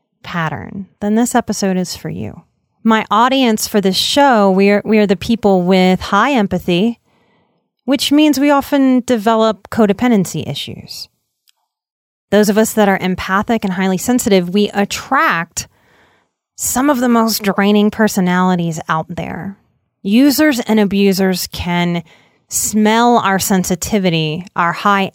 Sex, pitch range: female, 185-230 Hz